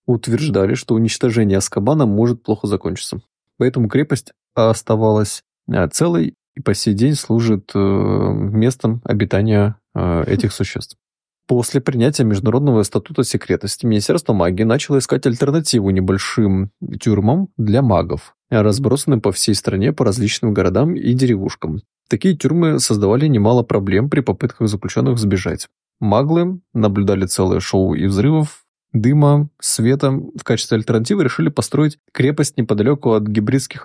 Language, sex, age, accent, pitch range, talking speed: Russian, male, 20-39, native, 100-130 Hz, 120 wpm